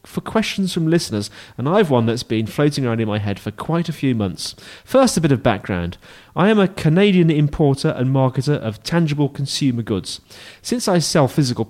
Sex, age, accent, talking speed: male, 30-49, British, 200 wpm